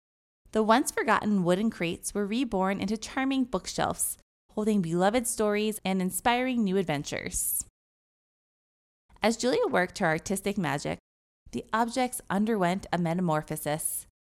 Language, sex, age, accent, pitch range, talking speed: English, female, 20-39, American, 160-230 Hz, 115 wpm